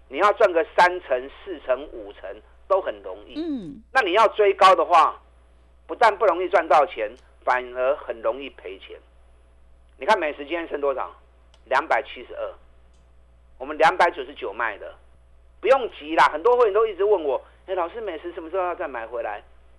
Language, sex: Chinese, male